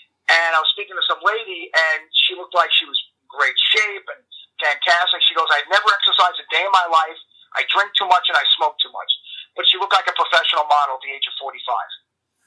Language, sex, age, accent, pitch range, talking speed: English, male, 40-59, American, 160-210 Hz, 235 wpm